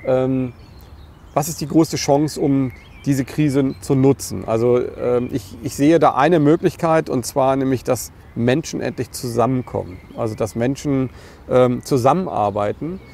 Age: 40-59